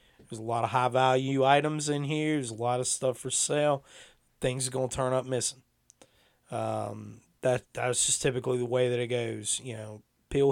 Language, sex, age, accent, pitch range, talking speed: English, male, 30-49, American, 120-150 Hz, 200 wpm